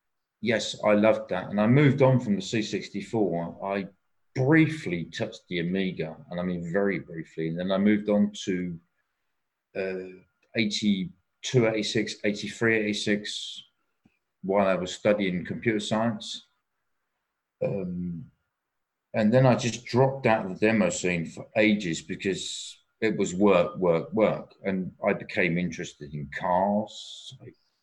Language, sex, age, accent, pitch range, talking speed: English, male, 40-59, British, 90-110 Hz, 135 wpm